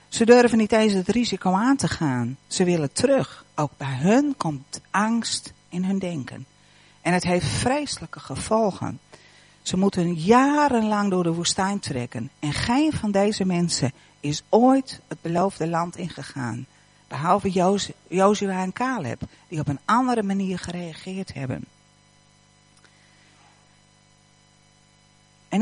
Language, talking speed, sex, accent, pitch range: Dutch, 130 wpm, female, Dutch, 145-200 Hz